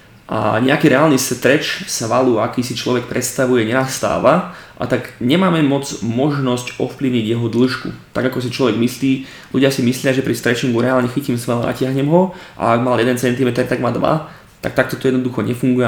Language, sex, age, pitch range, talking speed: Slovak, male, 20-39, 115-130 Hz, 180 wpm